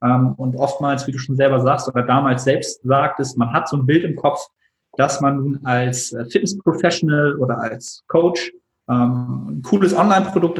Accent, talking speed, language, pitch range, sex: German, 175 wpm, German, 125-145 Hz, male